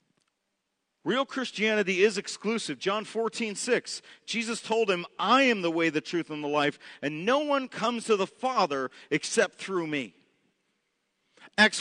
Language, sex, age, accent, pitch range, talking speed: English, male, 40-59, American, 185-255 Hz, 150 wpm